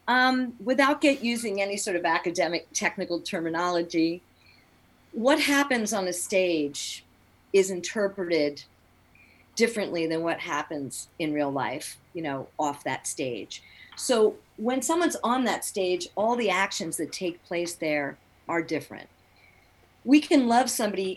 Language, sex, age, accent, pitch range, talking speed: English, female, 40-59, American, 155-205 Hz, 135 wpm